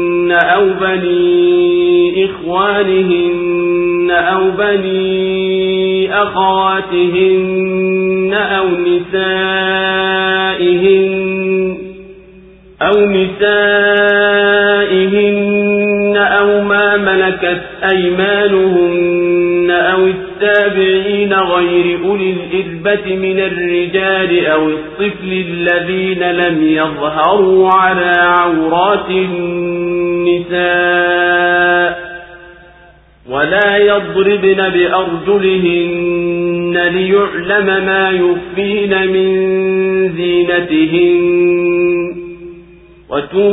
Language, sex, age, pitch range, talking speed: Swahili, male, 50-69, 175-195 Hz, 50 wpm